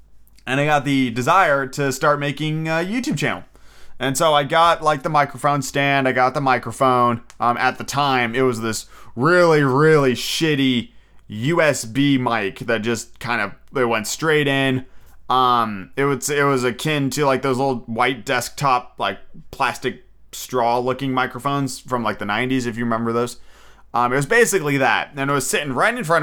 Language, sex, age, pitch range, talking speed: English, male, 30-49, 125-150 Hz, 185 wpm